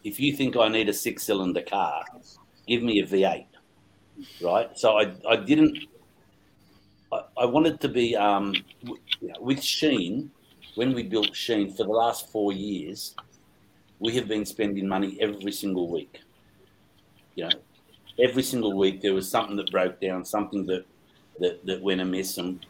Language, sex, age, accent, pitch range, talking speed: English, male, 50-69, Australian, 95-110 Hz, 160 wpm